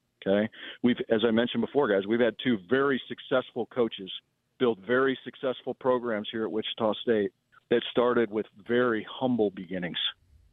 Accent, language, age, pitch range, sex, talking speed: American, English, 50-69, 105-125 Hz, male, 155 wpm